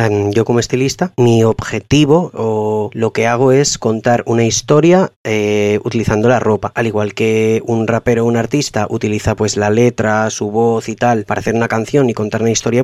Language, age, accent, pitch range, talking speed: Spanish, 30-49, Spanish, 110-130 Hz, 190 wpm